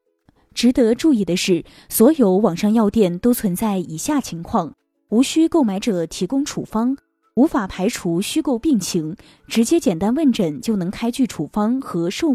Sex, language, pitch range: female, Chinese, 185-265 Hz